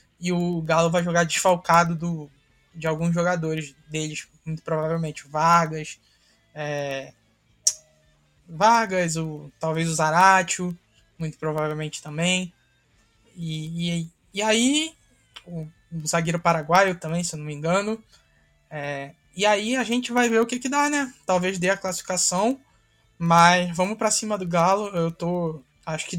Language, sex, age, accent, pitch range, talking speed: Portuguese, male, 20-39, Brazilian, 160-195 Hz, 135 wpm